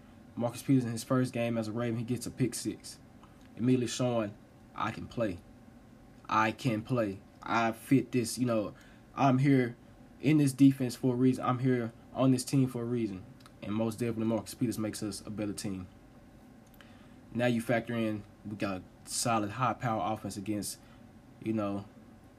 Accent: American